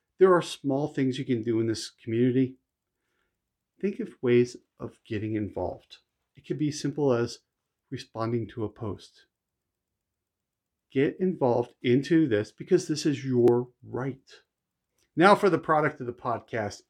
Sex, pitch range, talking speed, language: male, 120-160 Hz, 145 wpm, English